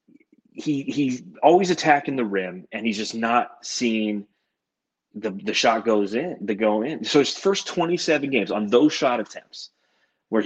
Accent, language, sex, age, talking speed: American, English, male, 30-49, 165 wpm